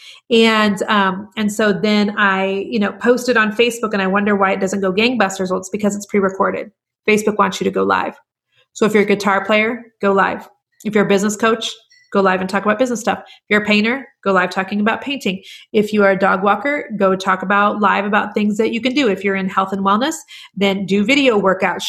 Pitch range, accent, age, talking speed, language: 195-230 Hz, American, 30-49, 235 wpm, English